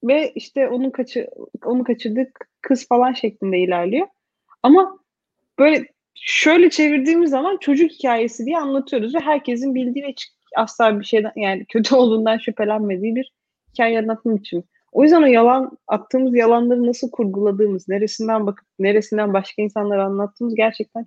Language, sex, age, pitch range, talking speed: Turkish, female, 30-49, 200-270 Hz, 140 wpm